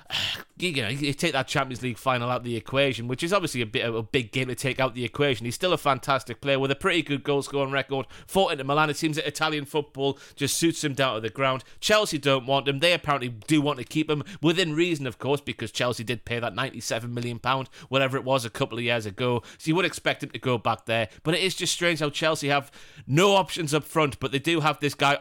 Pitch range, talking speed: 125-155 Hz, 265 wpm